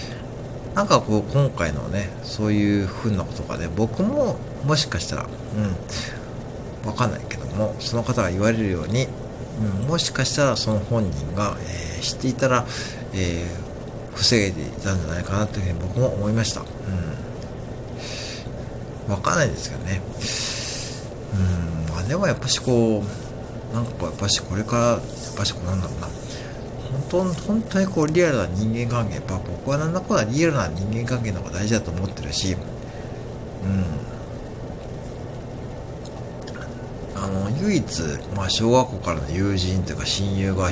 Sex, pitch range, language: male, 100-125 Hz, Japanese